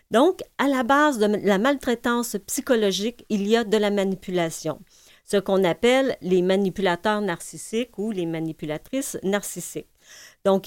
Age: 40-59